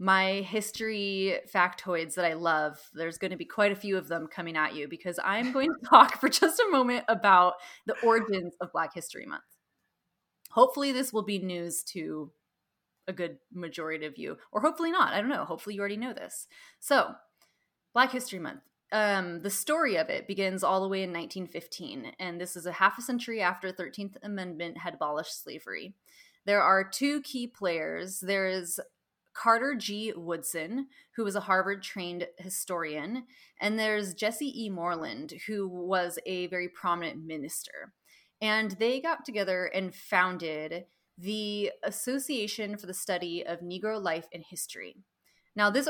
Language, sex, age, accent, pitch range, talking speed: English, female, 20-39, American, 175-215 Hz, 165 wpm